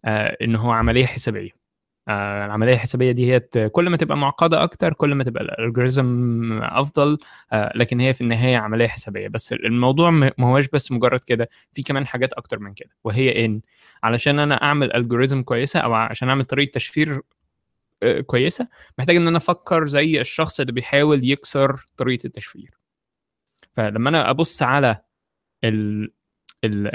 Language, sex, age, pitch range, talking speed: Arabic, male, 20-39, 115-145 Hz, 150 wpm